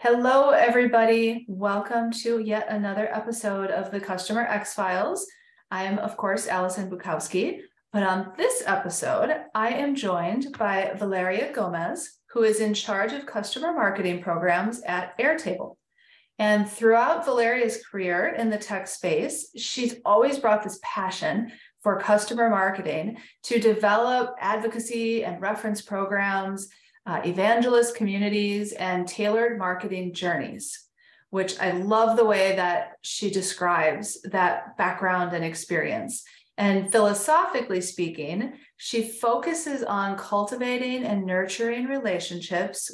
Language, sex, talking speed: English, female, 125 wpm